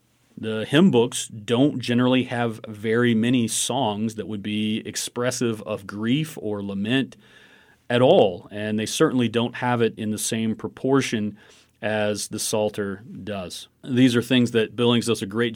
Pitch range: 105-120 Hz